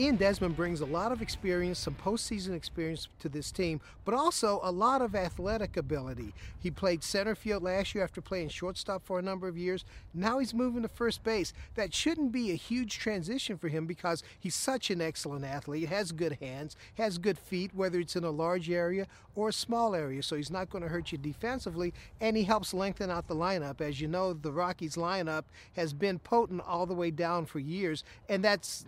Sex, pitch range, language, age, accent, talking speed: male, 160-195 Hz, English, 40-59, American, 210 wpm